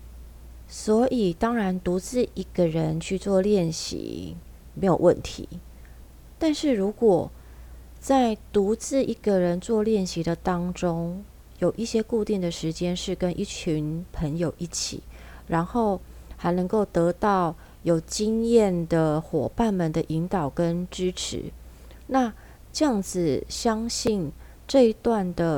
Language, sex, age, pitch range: Chinese, female, 30-49, 160-210 Hz